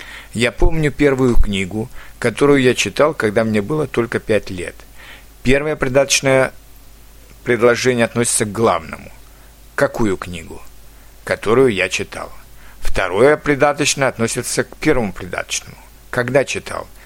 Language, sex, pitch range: Russian, male, 105-140 Hz